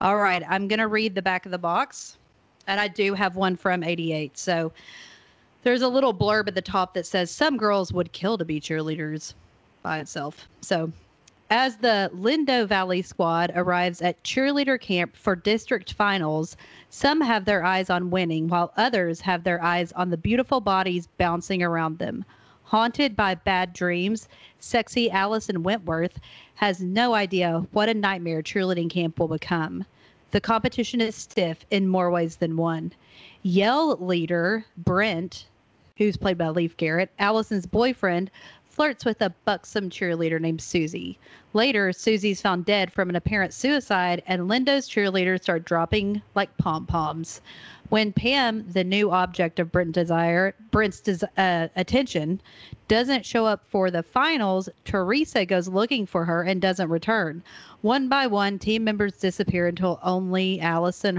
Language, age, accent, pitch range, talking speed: English, 40-59, American, 175-210 Hz, 155 wpm